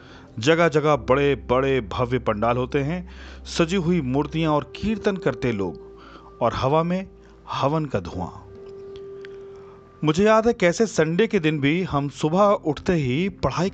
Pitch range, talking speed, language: 115-165 Hz, 150 wpm, Hindi